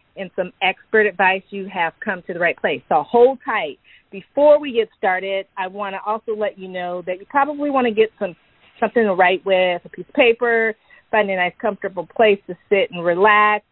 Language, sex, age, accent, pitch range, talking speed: English, female, 40-59, American, 180-215 Hz, 215 wpm